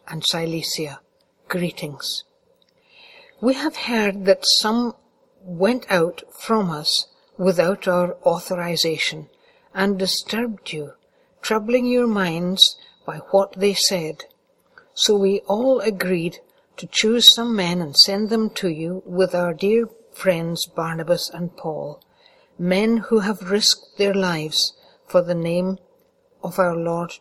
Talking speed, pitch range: 125 wpm, 175-245 Hz